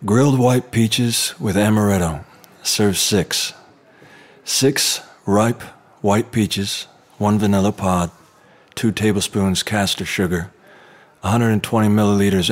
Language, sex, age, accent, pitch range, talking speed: English, male, 40-59, American, 90-105 Hz, 95 wpm